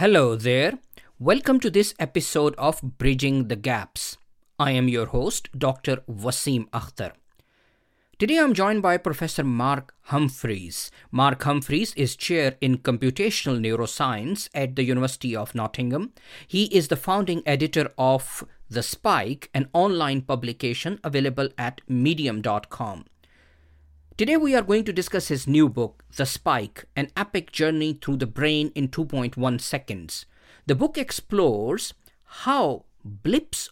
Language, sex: English, male